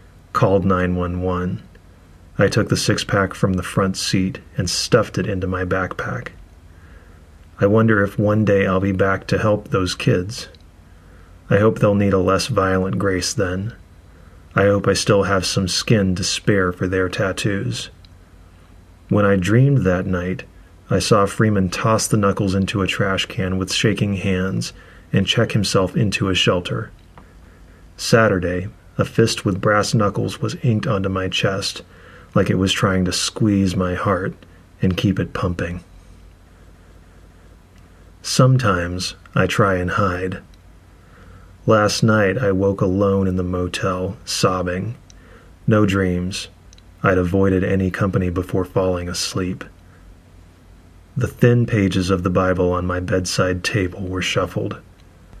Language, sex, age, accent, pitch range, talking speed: English, male, 30-49, American, 90-100 Hz, 145 wpm